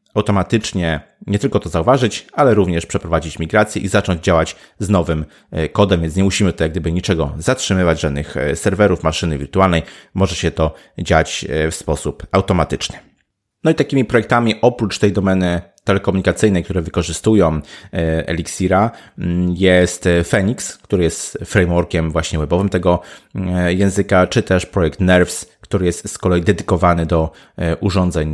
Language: Polish